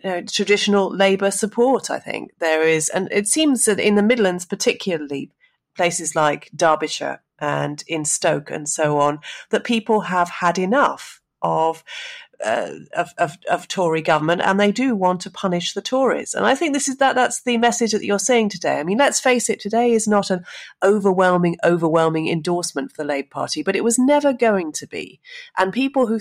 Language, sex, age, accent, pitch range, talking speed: English, female, 40-59, British, 165-220 Hz, 190 wpm